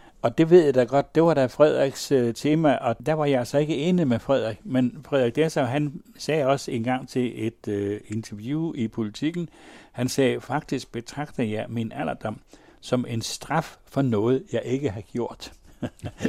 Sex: male